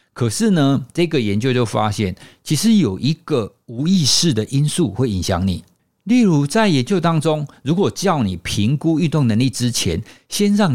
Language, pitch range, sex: Chinese, 100-155 Hz, male